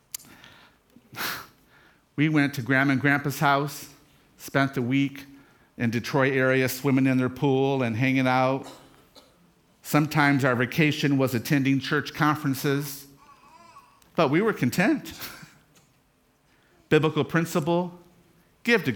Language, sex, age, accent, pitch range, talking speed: English, male, 50-69, American, 135-180 Hz, 110 wpm